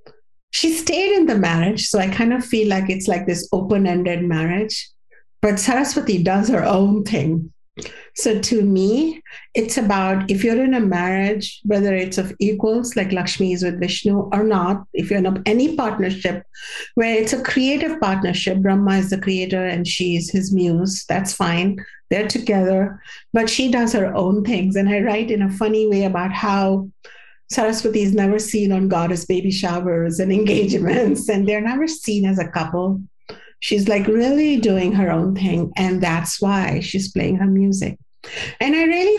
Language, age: English, 50-69